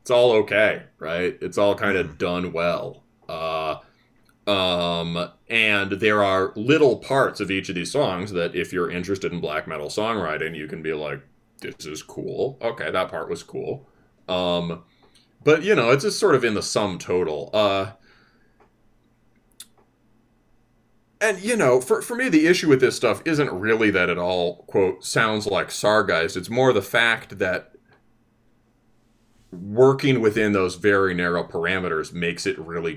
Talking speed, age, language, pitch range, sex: 160 wpm, 30-49, English, 90-120 Hz, male